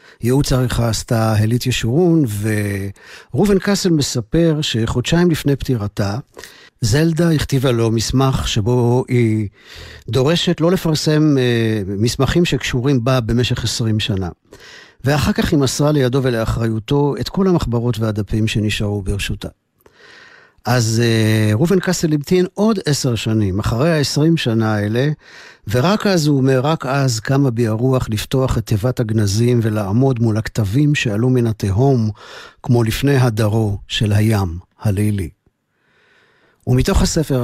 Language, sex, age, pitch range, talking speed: Hebrew, male, 50-69, 110-140 Hz, 125 wpm